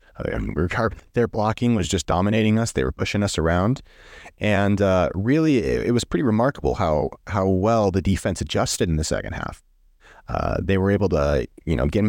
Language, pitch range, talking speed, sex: English, 85-110 Hz, 205 wpm, male